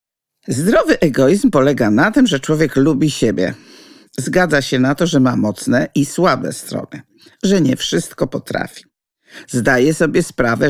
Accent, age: native, 50-69